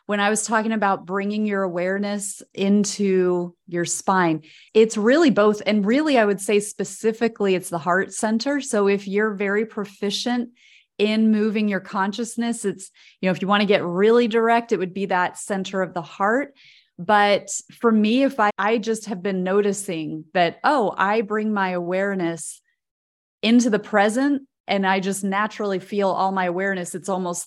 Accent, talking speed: American, 175 wpm